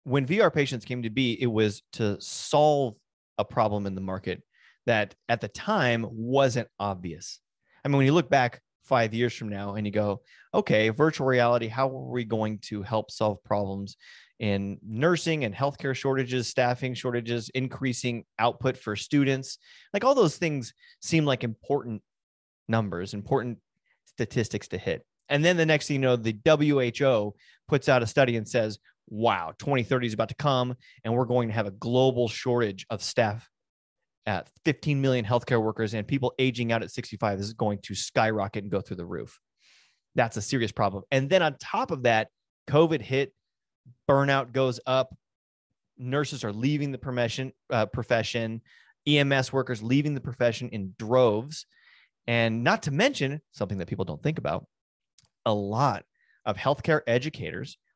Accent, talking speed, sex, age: American, 170 wpm, male, 30-49